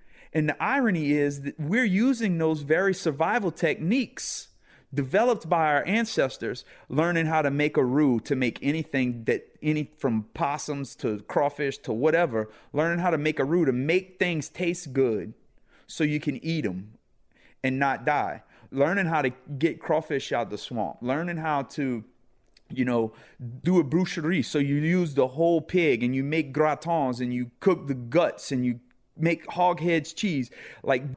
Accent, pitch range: American, 130-170 Hz